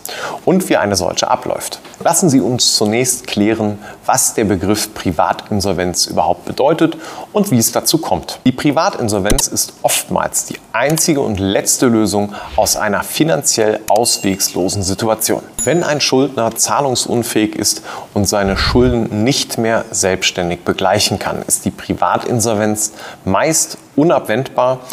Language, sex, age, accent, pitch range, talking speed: German, male, 30-49, German, 105-125 Hz, 130 wpm